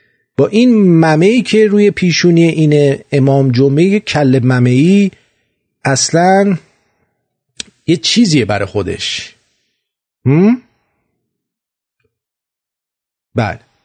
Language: English